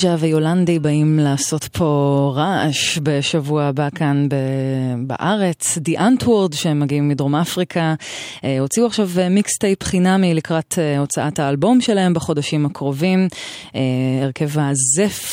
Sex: female